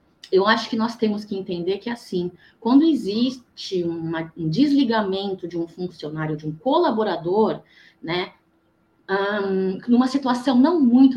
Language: Portuguese